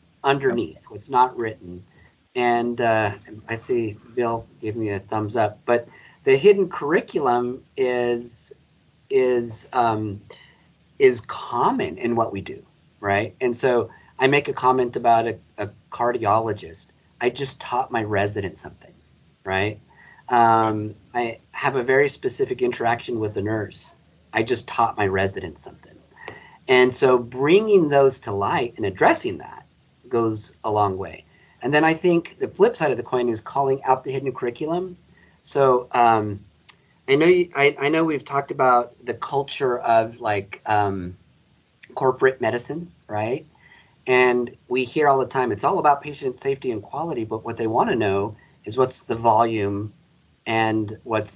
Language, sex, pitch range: English, male, 110-140 Hz